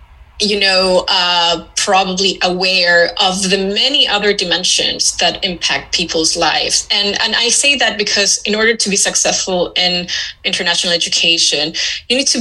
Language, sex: English, female